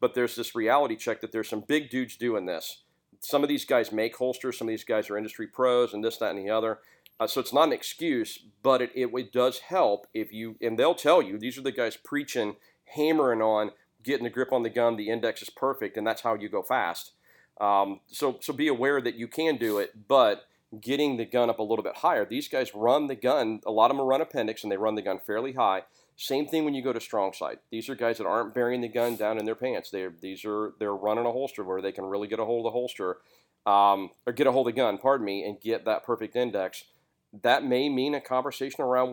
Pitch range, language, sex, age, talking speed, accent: 110-130 Hz, English, male, 40-59, 260 wpm, American